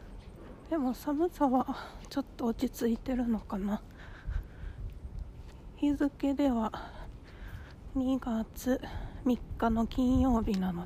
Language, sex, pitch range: Japanese, female, 190-250 Hz